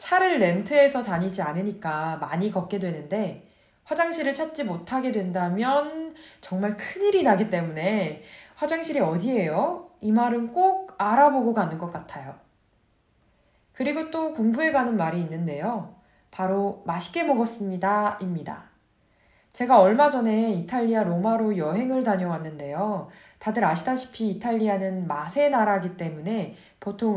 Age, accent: 20-39, native